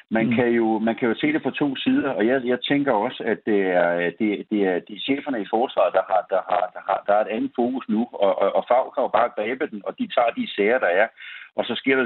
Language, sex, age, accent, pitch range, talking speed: Danish, male, 60-79, native, 110-150 Hz, 290 wpm